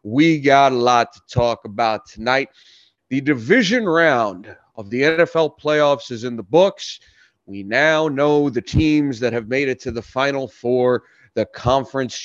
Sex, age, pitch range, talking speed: male, 30-49, 120-160 Hz, 165 wpm